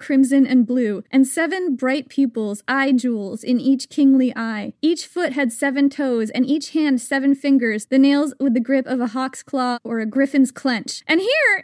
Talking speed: 195 wpm